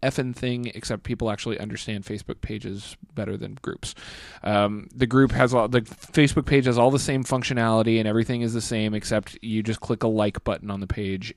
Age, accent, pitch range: 20-39, American, 100-120 Hz